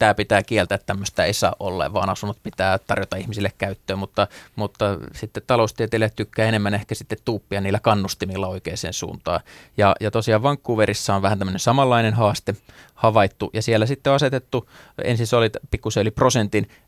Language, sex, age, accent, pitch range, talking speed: Finnish, male, 20-39, native, 100-115 Hz, 165 wpm